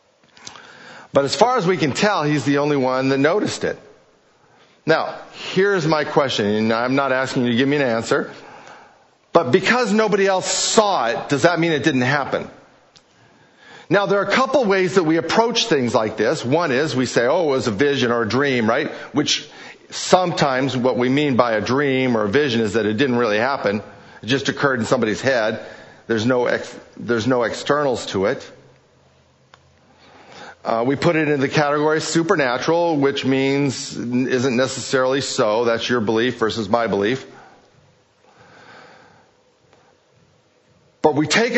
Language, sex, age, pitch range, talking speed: English, male, 50-69, 125-160 Hz, 170 wpm